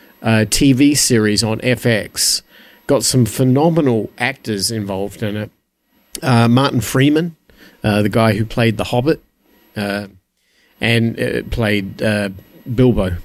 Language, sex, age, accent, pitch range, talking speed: English, male, 50-69, Australian, 105-140 Hz, 120 wpm